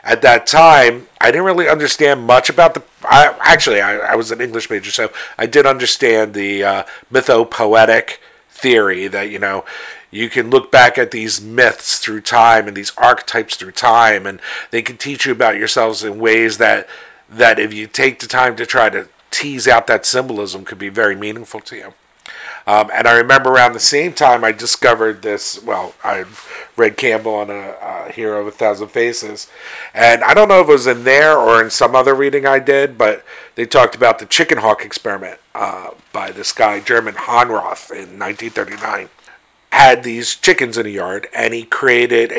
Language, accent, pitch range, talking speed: English, American, 115-150 Hz, 190 wpm